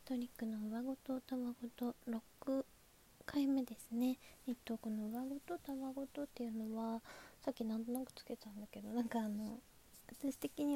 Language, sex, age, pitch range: Japanese, female, 20-39, 215-260 Hz